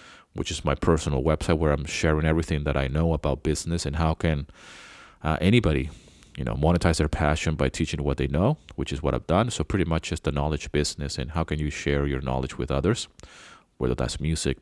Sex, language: male, English